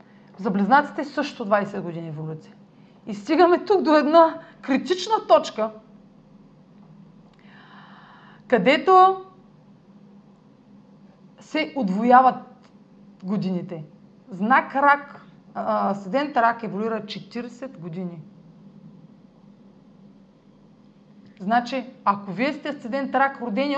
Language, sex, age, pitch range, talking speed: Bulgarian, female, 30-49, 205-270 Hz, 80 wpm